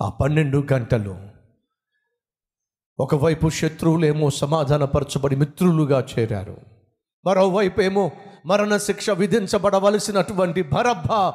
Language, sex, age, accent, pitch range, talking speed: Telugu, male, 50-69, native, 155-220 Hz, 80 wpm